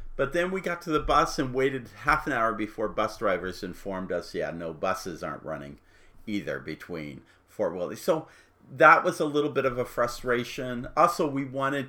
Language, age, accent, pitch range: English, 50-69, American, 100-135 Hz